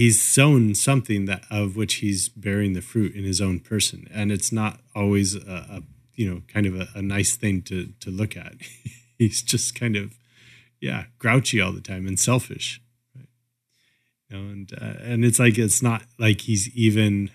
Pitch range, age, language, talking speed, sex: 100-120 Hz, 30-49, English, 195 wpm, male